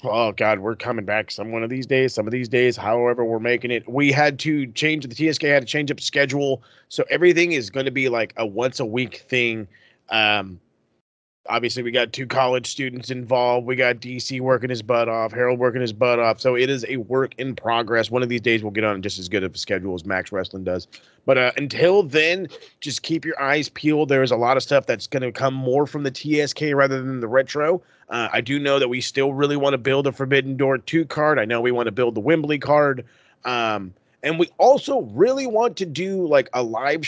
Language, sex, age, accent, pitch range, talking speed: English, male, 30-49, American, 120-150 Hz, 240 wpm